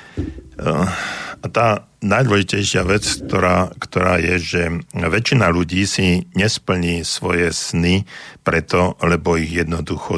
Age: 50-69